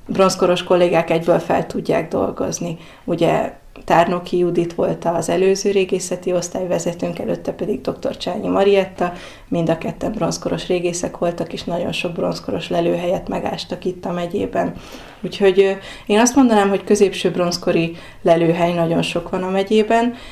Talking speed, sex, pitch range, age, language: 140 wpm, female, 170-195 Hz, 20-39, Hungarian